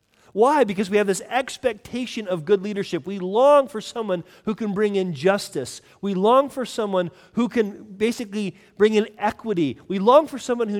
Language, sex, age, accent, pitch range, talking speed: English, male, 40-59, American, 145-205 Hz, 185 wpm